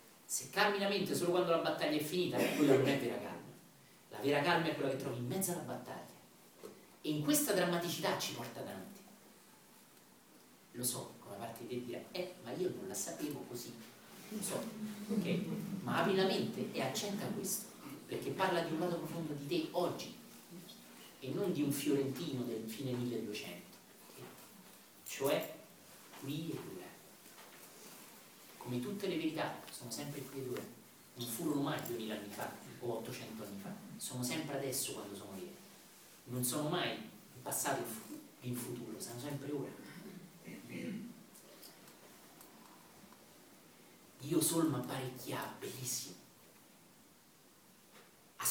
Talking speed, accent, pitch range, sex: 150 wpm, native, 125-185 Hz, male